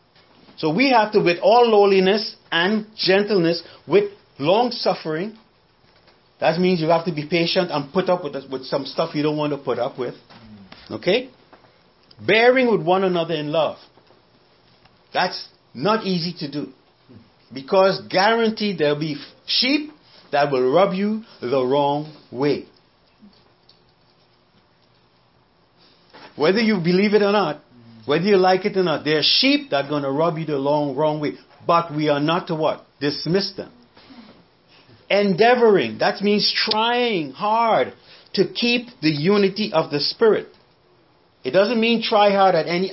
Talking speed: 155 wpm